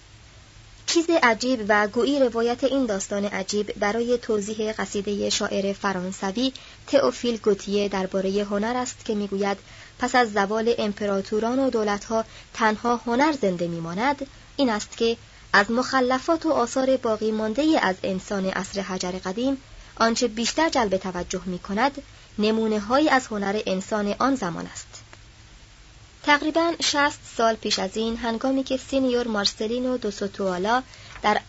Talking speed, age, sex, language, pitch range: 130 wpm, 30-49, male, Persian, 195-250 Hz